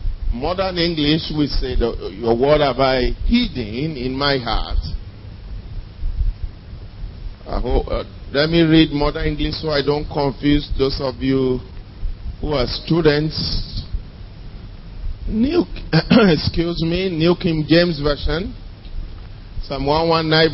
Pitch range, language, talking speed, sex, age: 100-150 Hz, English, 115 wpm, male, 50-69